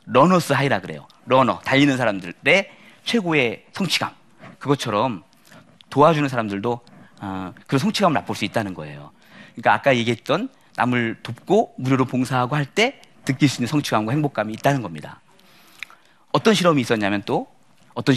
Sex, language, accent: male, Korean, native